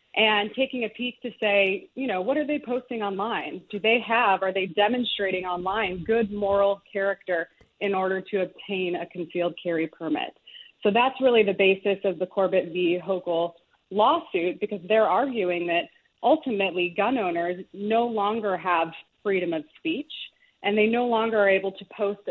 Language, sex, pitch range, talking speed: English, female, 185-230 Hz, 170 wpm